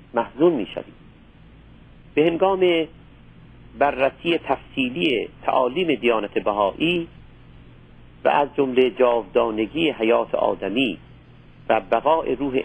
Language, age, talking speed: Persian, 50-69, 90 wpm